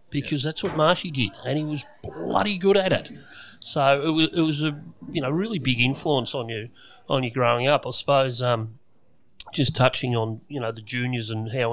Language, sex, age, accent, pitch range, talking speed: English, male, 30-49, Australian, 115-140 Hz, 210 wpm